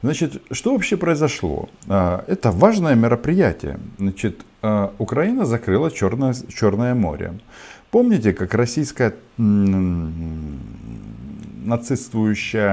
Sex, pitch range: male, 95-130 Hz